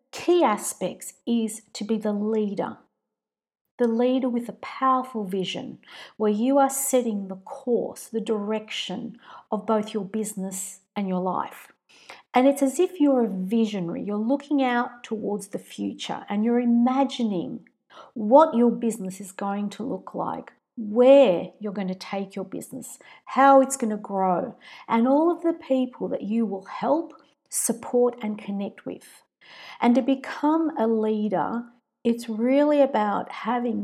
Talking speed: 155 wpm